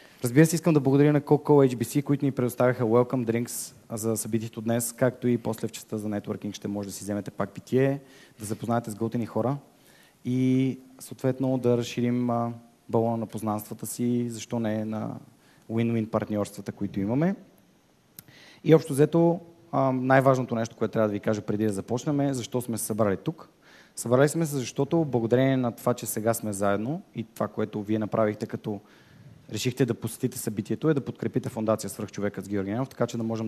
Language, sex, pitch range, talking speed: Bulgarian, male, 110-130 Hz, 185 wpm